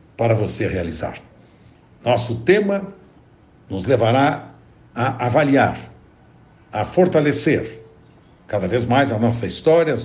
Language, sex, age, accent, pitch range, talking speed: Portuguese, male, 60-79, Brazilian, 115-165 Hz, 105 wpm